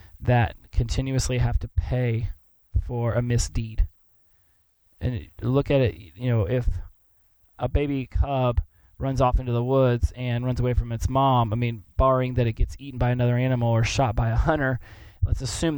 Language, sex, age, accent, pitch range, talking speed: English, male, 20-39, American, 95-125 Hz, 175 wpm